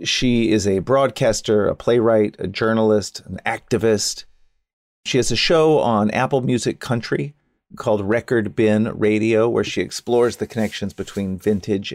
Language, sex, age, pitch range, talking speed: English, male, 40-59, 100-125 Hz, 145 wpm